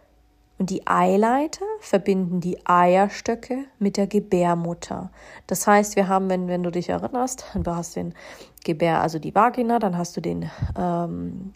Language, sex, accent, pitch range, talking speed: German, female, German, 165-200 Hz, 155 wpm